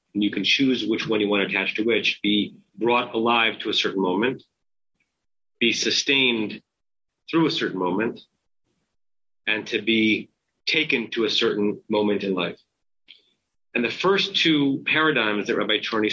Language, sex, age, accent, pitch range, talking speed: English, male, 40-59, American, 105-140 Hz, 160 wpm